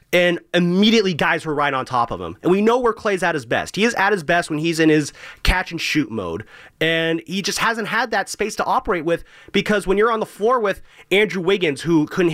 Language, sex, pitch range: English, male, 155-195 Hz